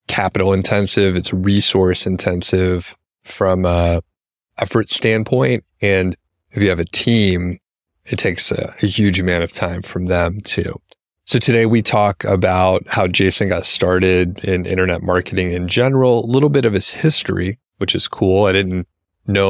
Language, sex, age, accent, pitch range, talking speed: English, male, 30-49, American, 90-100 Hz, 160 wpm